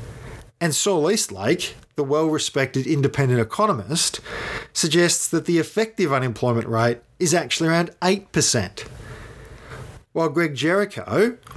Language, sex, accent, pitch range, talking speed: English, male, Australian, 120-160 Hz, 105 wpm